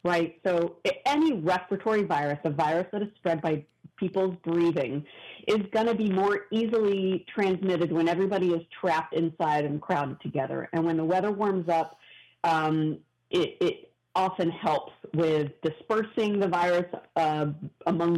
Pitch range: 155-195 Hz